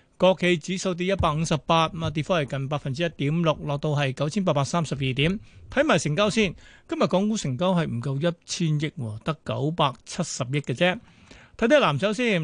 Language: Chinese